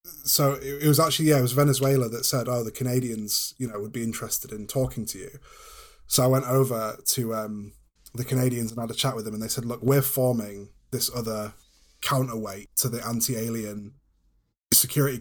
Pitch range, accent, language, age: 110-135 Hz, British, English, 20-39